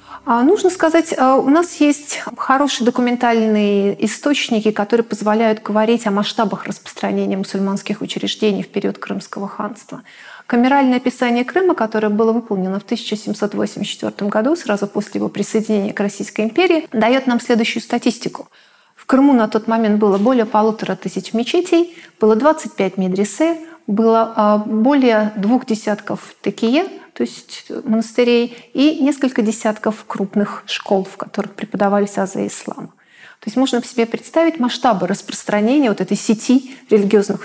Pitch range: 205-270 Hz